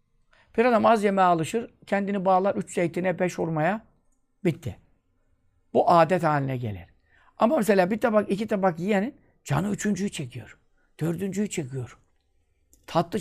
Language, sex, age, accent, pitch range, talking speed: Turkish, male, 60-79, native, 125-210 Hz, 130 wpm